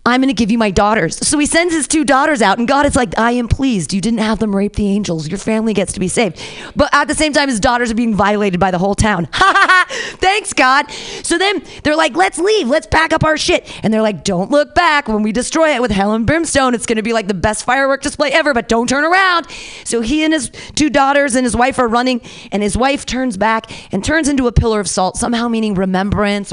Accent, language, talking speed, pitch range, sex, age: American, English, 265 wpm, 210-290 Hz, female, 30-49